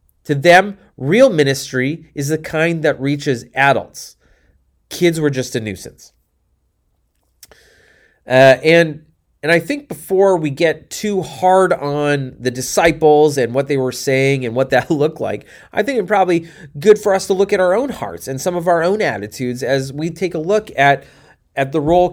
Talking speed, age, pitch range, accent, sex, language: 180 wpm, 30-49, 130-175 Hz, American, male, English